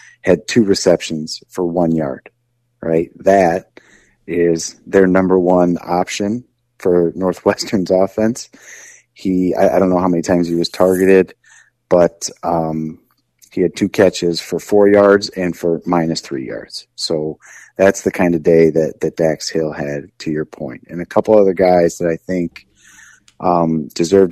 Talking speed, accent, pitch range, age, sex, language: 160 wpm, American, 85-95 Hz, 30-49, male, English